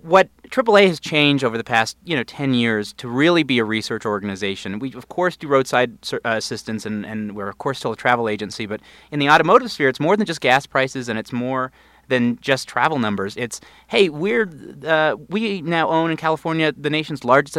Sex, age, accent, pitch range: male, 30-49, American, 120-165 Hz